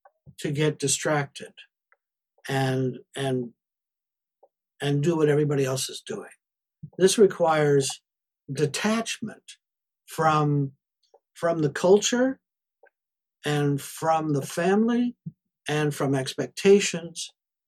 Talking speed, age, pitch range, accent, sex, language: 90 wpm, 60-79, 145-180 Hz, American, male, English